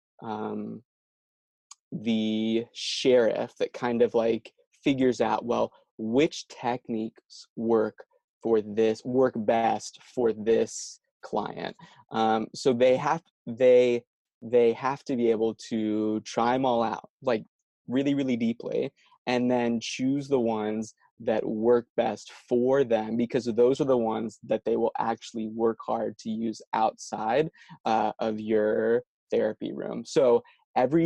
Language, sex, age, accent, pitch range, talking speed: English, male, 20-39, American, 110-130 Hz, 135 wpm